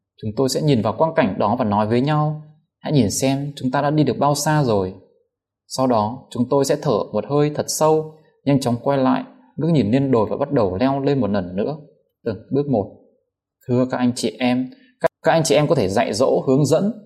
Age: 20-39